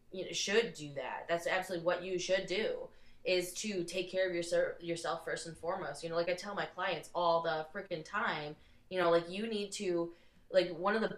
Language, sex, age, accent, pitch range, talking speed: English, female, 20-39, American, 160-190 Hz, 215 wpm